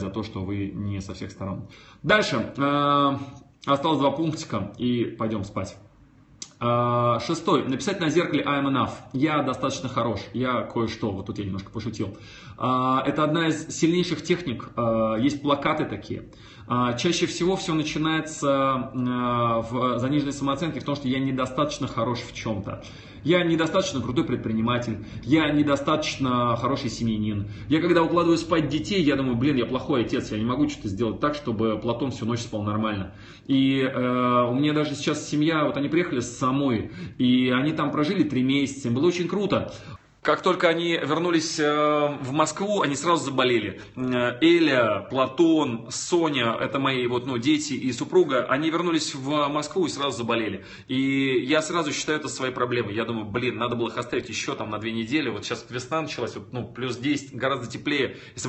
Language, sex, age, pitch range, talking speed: Russian, male, 20-39, 120-155 Hz, 165 wpm